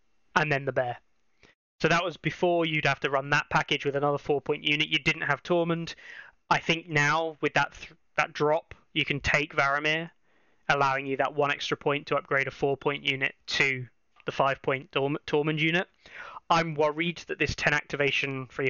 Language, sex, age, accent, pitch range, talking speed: English, male, 20-39, British, 135-155 Hz, 190 wpm